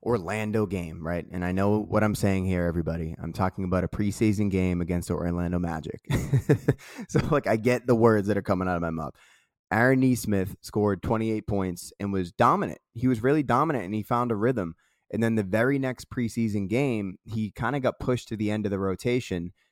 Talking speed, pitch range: 210 wpm, 95-115 Hz